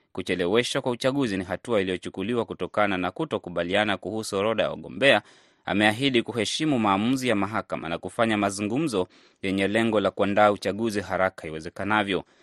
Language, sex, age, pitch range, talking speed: Swahili, male, 20-39, 95-120 Hz, 140 wpm